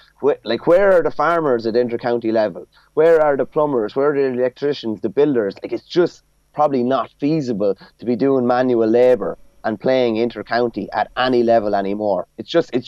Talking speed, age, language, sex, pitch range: 180 wpm, 30-49, English, male, 120-140 Hz